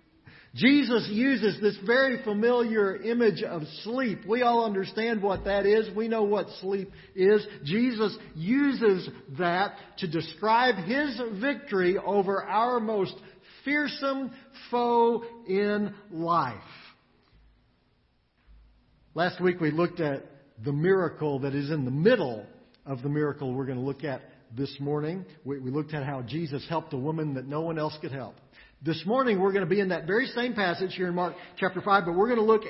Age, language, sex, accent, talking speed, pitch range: 50-69, English, male, American, 165 wpm, 155-225 Hz